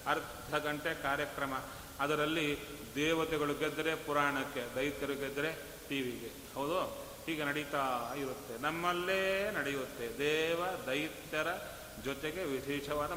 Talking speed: 95 wpm